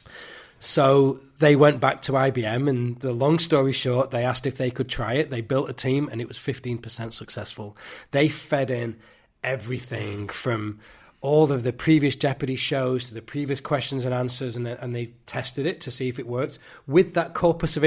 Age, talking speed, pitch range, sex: 20-39, 190 wpm, 115-140 Hz, male